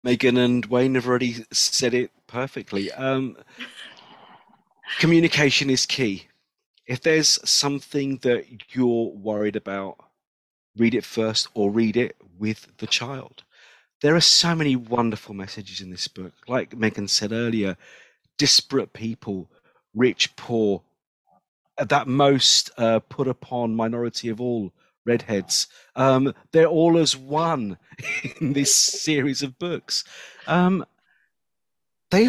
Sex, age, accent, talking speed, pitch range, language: male, 40-59, British, 125 wpm, 110-145 Hz, English